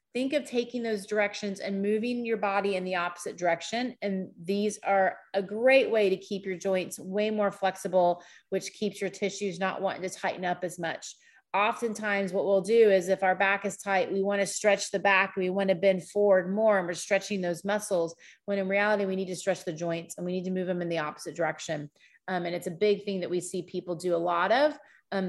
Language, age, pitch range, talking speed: English, 30-49, 185-210 Hz, 235 wpm